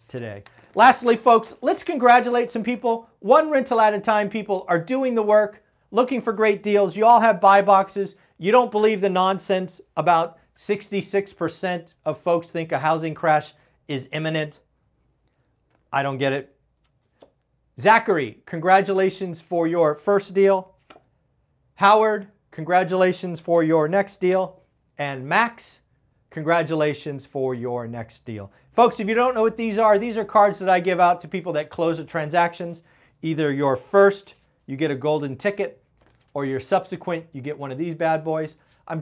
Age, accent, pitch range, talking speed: 40-59, American, 150-205 Hz, 160 wpm